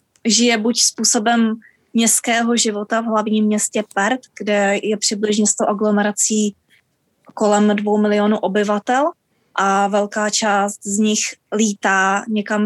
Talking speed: 120 wpm